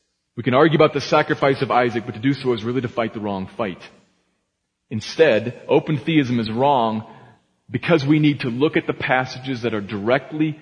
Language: English